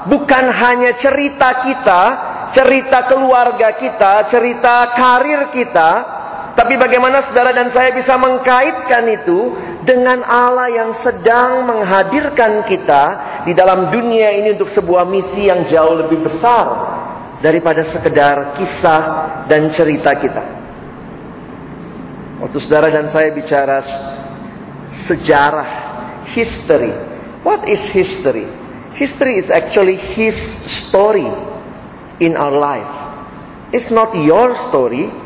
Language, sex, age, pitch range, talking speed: Indonesian, male, 40-59, 165-250 Hz, 105 wpm